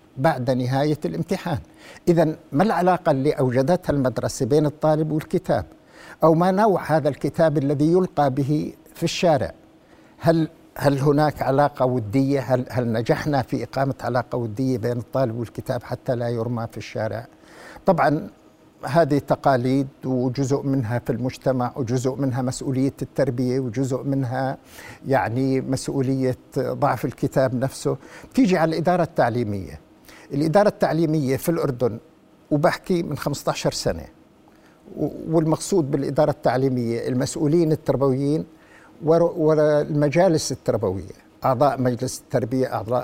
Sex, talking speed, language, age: male, 115 wpm, Arabic, 60-79